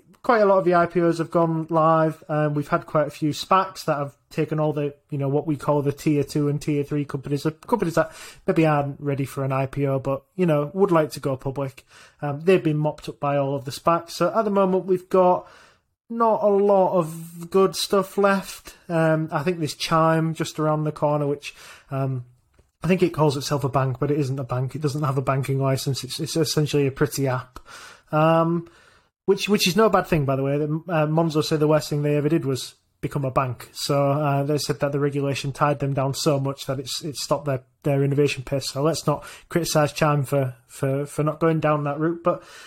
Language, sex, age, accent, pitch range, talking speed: English, male, 20-39, British, 145-170 Hz, 230 wpm